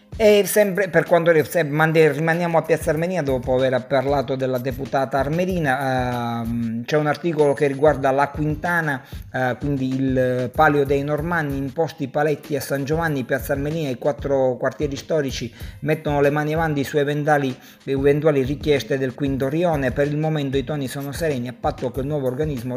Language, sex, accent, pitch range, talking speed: Italian, male, native, 130-155 Hz, 170 wpm